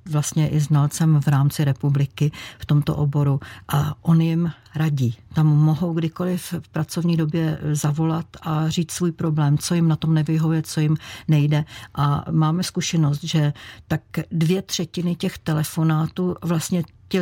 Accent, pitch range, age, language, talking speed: native, 145-175 Hz, 50-69, Czech, 150 wpm